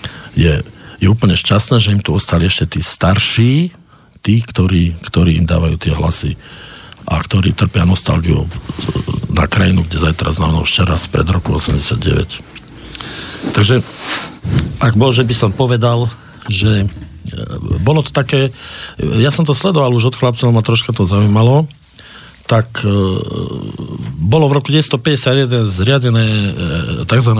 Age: 50-69